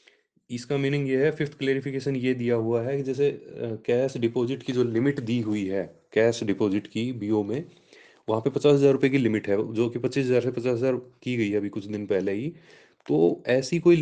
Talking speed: 225 wpm